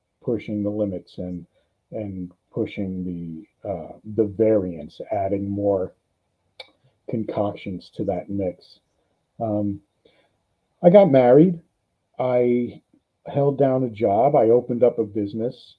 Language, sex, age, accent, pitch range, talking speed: English, male, 50-69, American, 95-130 Hz, 115 wpm